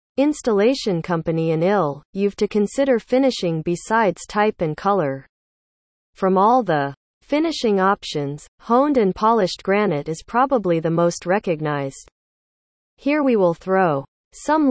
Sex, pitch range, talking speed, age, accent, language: female, 165-230 Hz, 125 wpm, 40-59, American, English